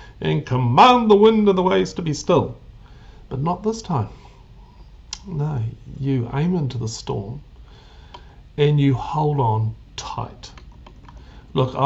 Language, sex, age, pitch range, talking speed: English, male, 50-69, 120-175 Hz, 130 wpm